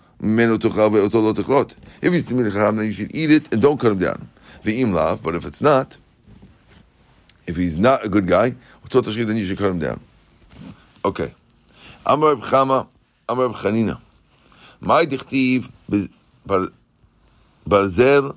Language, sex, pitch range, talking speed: English, male, 105-130 Hz, 150 wpm